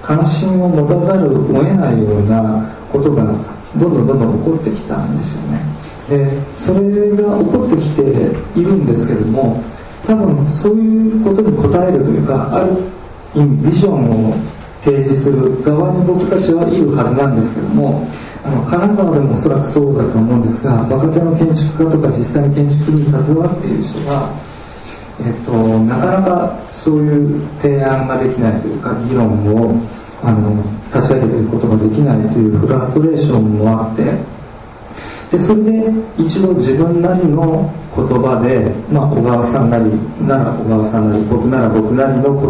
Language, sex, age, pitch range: Japanese, male, 40-59, 110-155 Hz